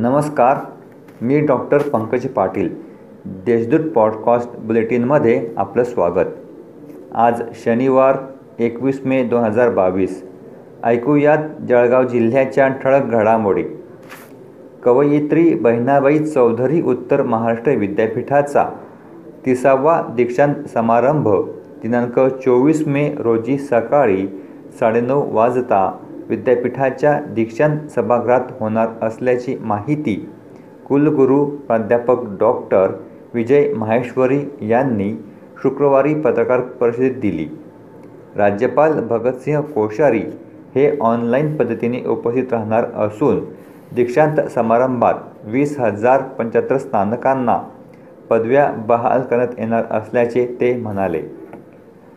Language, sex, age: Marathi, male, 40-59